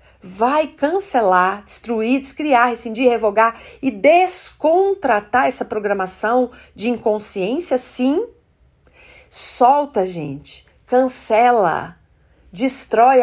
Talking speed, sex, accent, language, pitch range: 75 wpm, female, Brazilian, Portuguese, 180-250 Hz